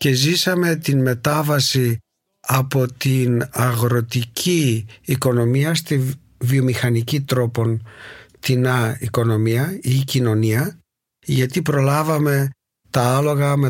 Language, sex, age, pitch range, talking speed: Greek, male, 50-69, 120-140 Hz, 90 wpm